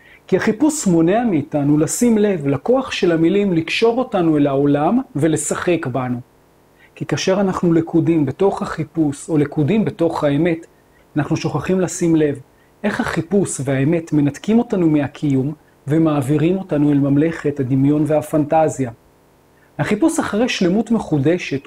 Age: 40-59